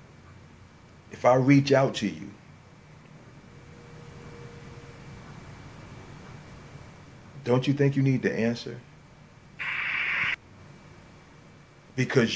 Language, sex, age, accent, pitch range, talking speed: English, male, 40-59, American, 115-140 Hz, 70 wpm